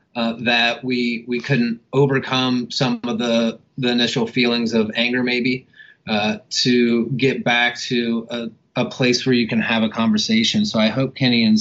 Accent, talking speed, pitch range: American, 175 wpm, 115-135 Hz